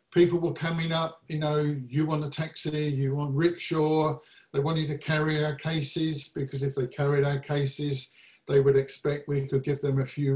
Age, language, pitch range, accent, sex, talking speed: 50-69, English, 135-155 Hz, British, male, 195 wpm